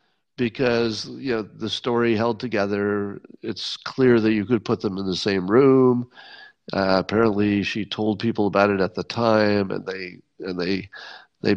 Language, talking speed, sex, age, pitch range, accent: English, 170 wpm, male, 50-69, 100-130 Hz, American